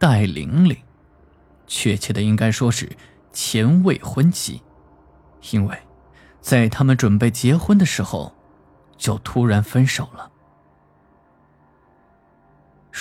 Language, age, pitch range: Chinese, 20-39, 95-140 Hz